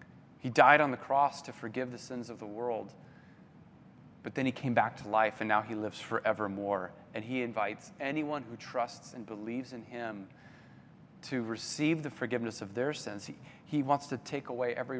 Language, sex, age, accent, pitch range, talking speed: English, male, 30-49, American, 120-150 Hz, 190 wpm